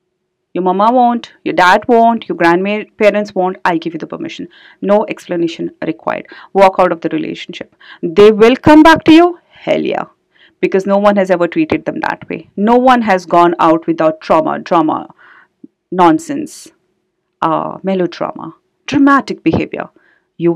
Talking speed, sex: 155 wpm, female